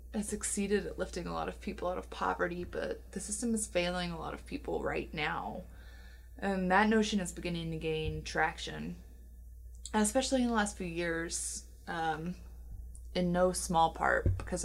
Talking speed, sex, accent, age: 170 wpm, female, American, 20-39